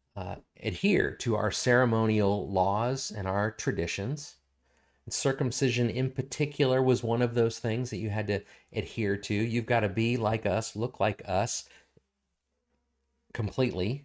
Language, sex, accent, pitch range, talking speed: English, male, American, 95-125 Hz, 140 wpm